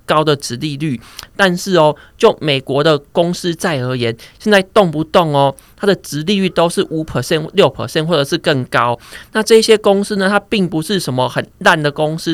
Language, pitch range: Chinese, 145-190 Hz